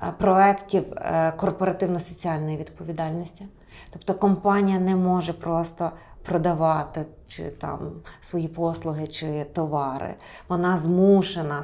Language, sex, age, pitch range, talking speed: Ukrainian, female, 30-49, 170-200 Hz, 90 wpm